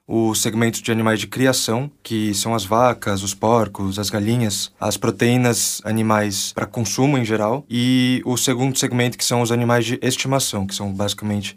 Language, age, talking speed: Portuguese, 20-39, 175 wpm